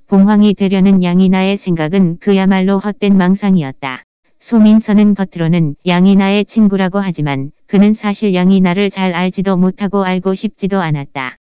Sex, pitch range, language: female, 185-200 Hz, Korean